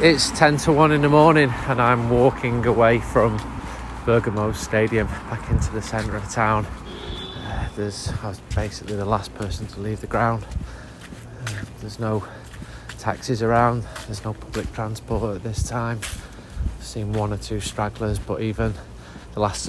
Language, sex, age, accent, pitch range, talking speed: English, male, 30-49, British, 100-115 Hz, 160 wpm